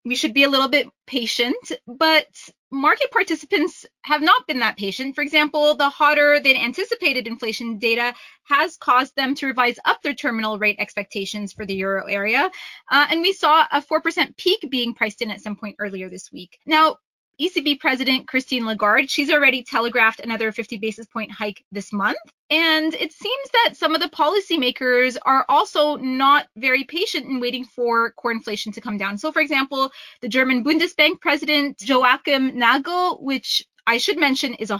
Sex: female